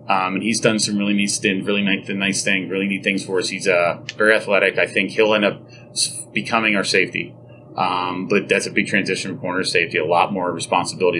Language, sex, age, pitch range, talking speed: English, male, 30-49, 95-110 Hz, 220 wpm